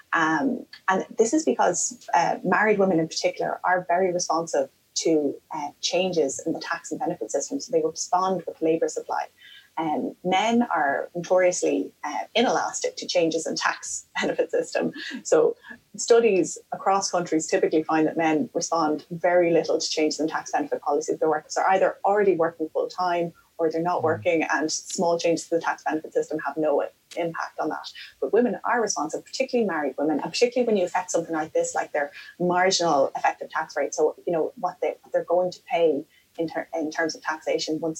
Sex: female